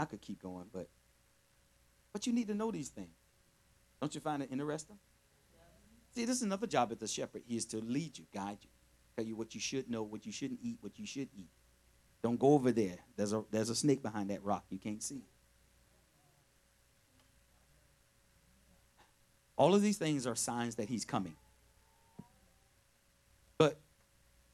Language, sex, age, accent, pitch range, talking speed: English, male, 50-69, American, 105-155 Hz, 175 wpm